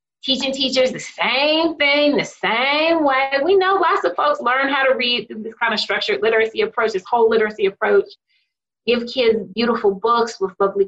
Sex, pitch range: female, 195-245 Hz